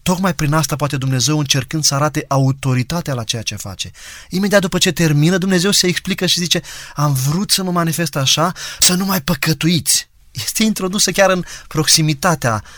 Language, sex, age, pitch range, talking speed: Romanian, male, 20-39, 130-165 Hz, 175 wpm